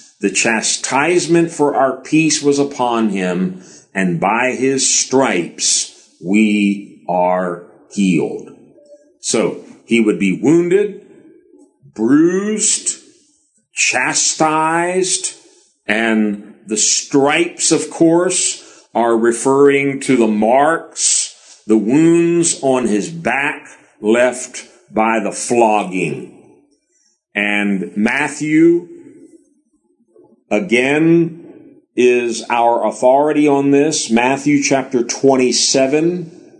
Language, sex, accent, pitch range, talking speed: English, male, American, 115-175 Hz, 85 wpm